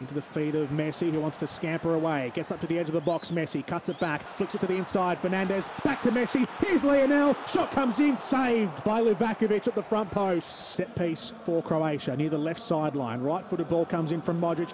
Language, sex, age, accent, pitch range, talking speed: English, male, 20-39, Australian, 170-245 Hz, 235 wpm